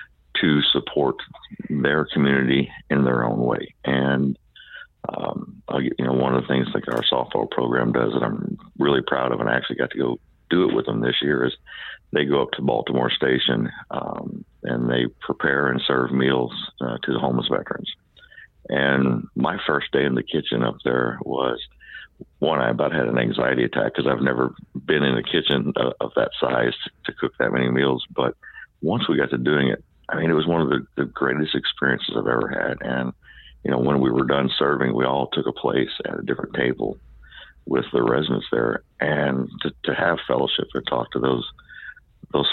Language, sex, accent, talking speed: English, male, American, 200 wpm